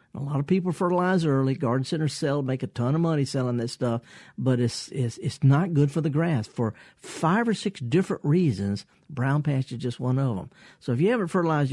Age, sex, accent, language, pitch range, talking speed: 50-69, male, American, English, 120-160 Hz, 225 wpm